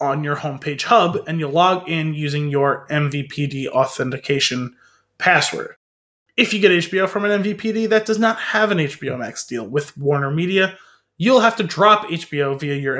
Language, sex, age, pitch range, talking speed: English, male, 20-39, 140-175 Hz, 175 wpm